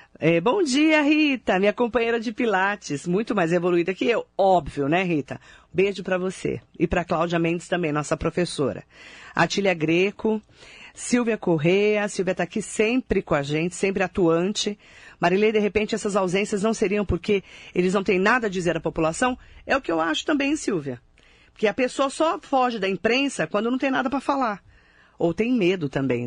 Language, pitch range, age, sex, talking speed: Portuguese, 165-220 Hz, 40-59, female, 180 wpm